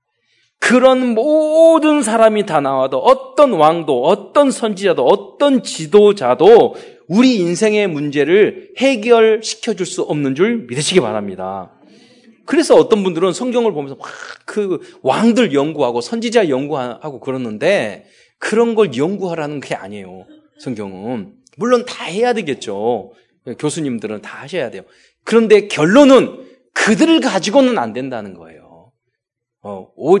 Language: Korean